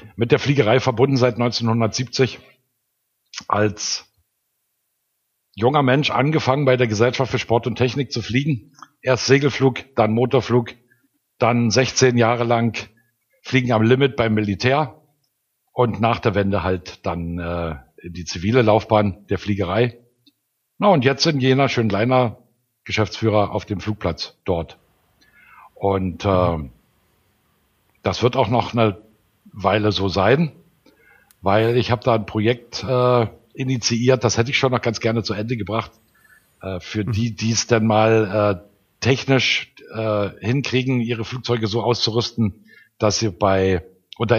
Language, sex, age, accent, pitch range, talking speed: German, male, 60-79, German, 105-130 Hz, 135 wpm